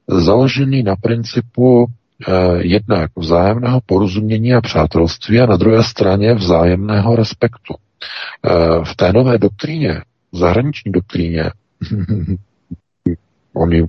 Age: 50-69